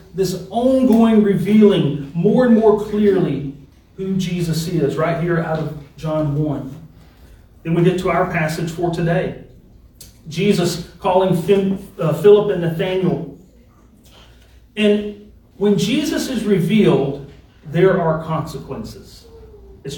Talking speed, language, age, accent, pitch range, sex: 115 wpm, English, 40-59, American, 150-200 Hz, male